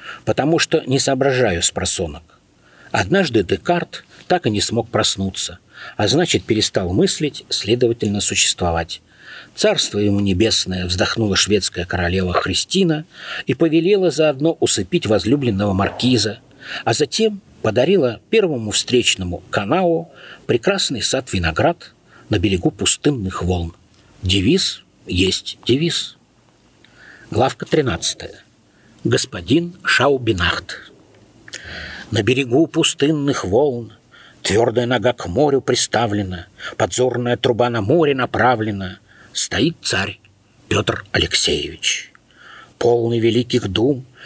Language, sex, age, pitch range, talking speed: Russian, male, 50-69, 100-145 Hz, 95 wpm